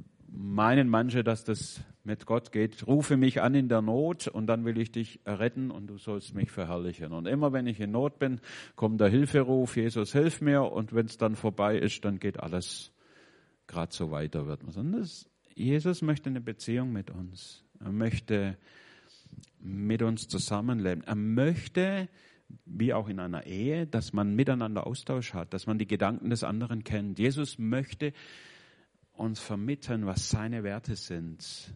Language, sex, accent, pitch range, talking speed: German, male, German, 105-135 Hz, 165 wpm